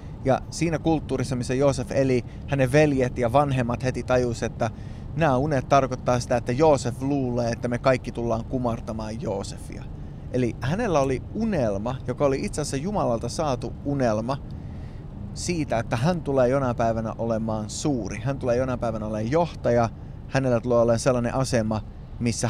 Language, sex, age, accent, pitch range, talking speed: Finnish, male, 20-39, native, 115-135 Hz, 145 wpm